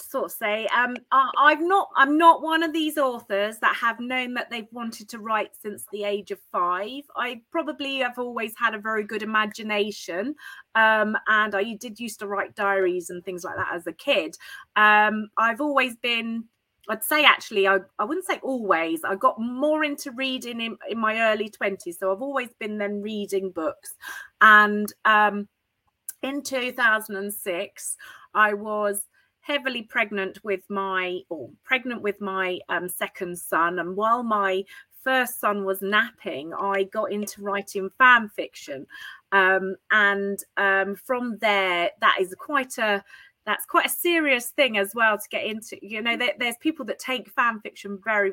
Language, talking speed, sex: English, 170 wpm, female